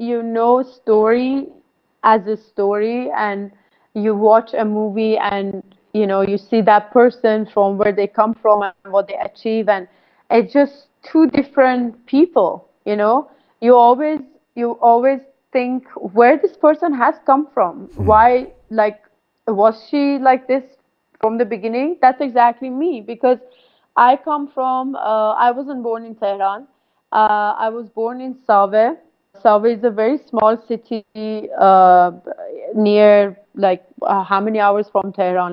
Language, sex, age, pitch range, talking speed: English, female, 30-49, 205-245 Hz, 150 wpm